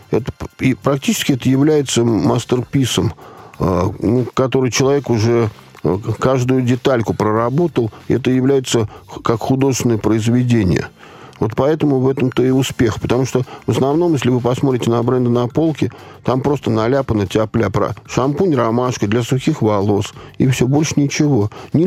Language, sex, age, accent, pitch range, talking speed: Russian, male, 50-69, native, 115-140 Hz, 130 wpm